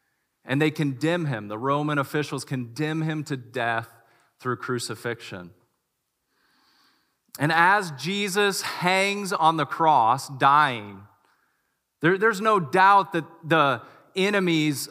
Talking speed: 110 wpm